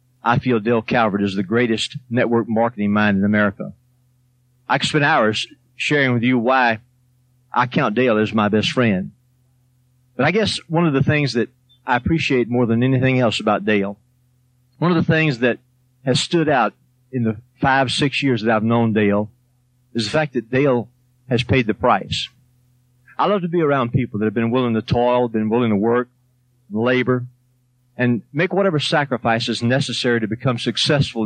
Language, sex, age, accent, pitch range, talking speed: English, male, 40-59, American, 115-130 Hz, 180 wpm